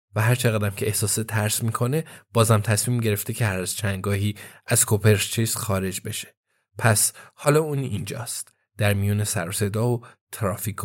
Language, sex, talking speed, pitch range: Persian, male, 155 wpm, 105-125 Hz